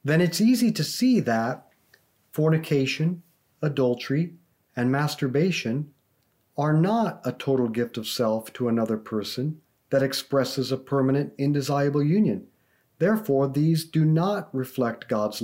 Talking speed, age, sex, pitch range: 125 wpm, 50-69, male, 125-160 Hz